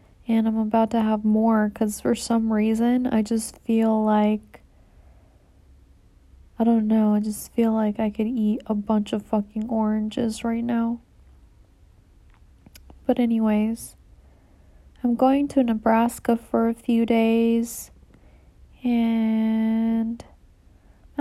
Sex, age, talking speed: female, 20-39, 120 wpm